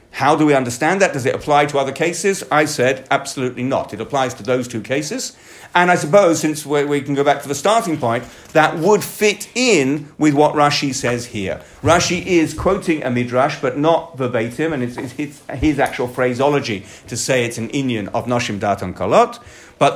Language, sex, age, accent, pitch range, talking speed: English, male, 50-69, British, 135-200 Hz, 205 wpm